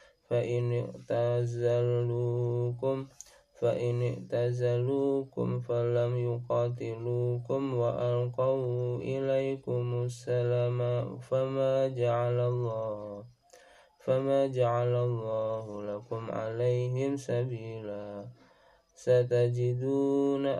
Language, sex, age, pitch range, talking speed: Indonesian, male, 20-39, 120-125 Hz, 60 wpm